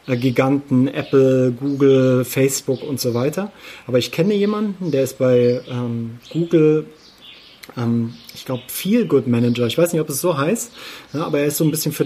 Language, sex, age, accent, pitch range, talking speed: German, male, 30-49, German, 125-160 Hz, 180 wpm